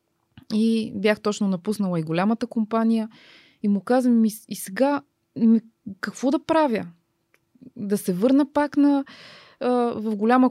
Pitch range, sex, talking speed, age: 180-240 Hz, female, 125 wpm, 20-39